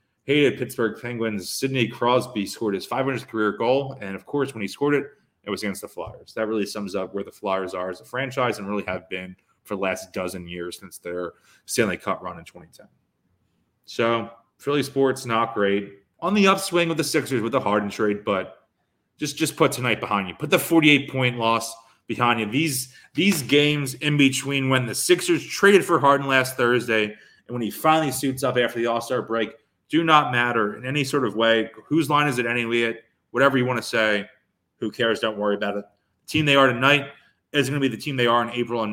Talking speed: 215 wpm